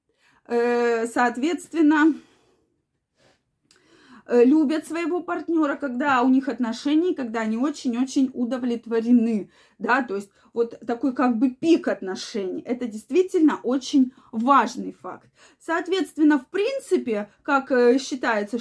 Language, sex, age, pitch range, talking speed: Russian, female, 20-39, 240-310 Hz, 100 wpm